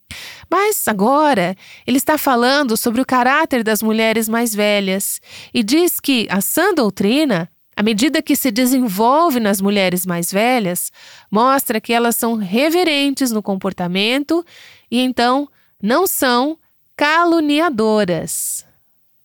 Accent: Brazilian